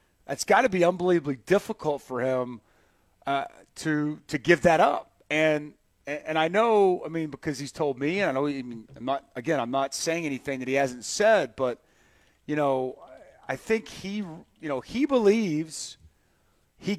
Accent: American